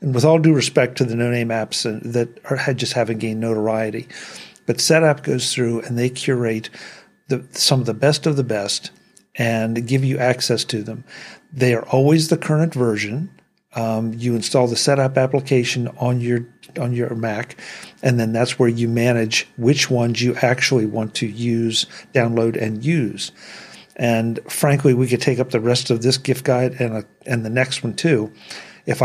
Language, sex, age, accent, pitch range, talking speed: English, male, 50-69, American, 115-135 Hz, 180 wpm